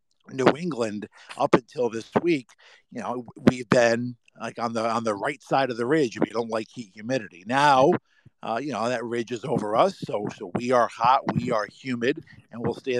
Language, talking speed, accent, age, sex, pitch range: English, 210 wpm, American, 50-69, male, 110-140 Hz